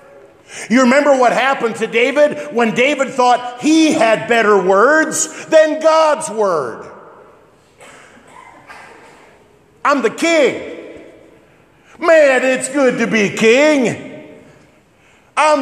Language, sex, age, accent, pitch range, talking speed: English, male, 50-69, American, 210-295 Hz, 100 wpm